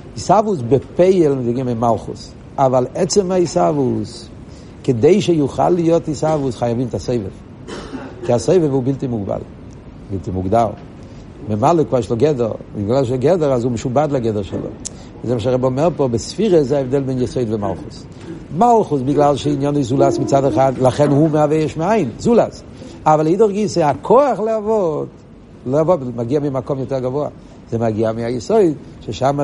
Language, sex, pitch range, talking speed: Hebrew, male, 120-155 Hz, 140 wpm